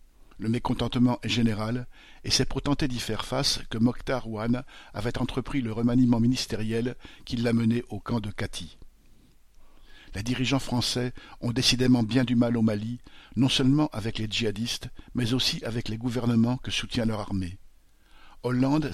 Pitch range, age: 110-125 Hz, 50-69